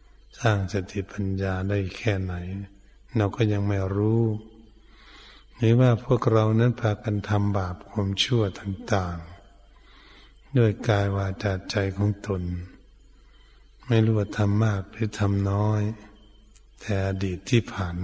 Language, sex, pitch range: Thai, male, 95-110 Hz